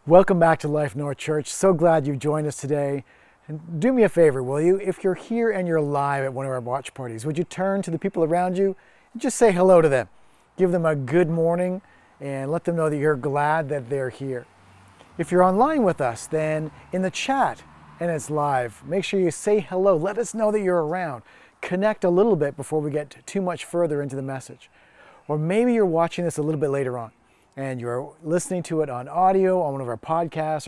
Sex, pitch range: male, 140-185 Hz